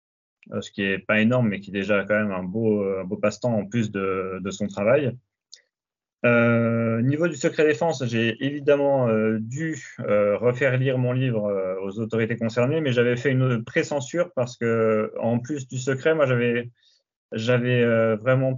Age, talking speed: 30-49, 175 wpm